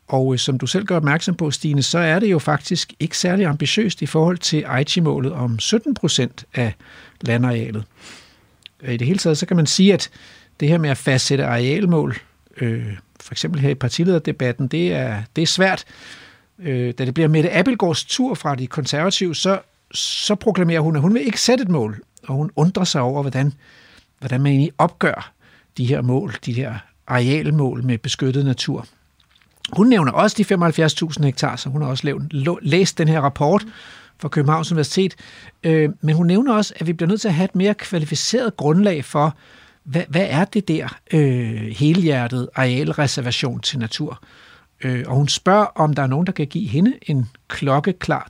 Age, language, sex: 60-79, Danish, male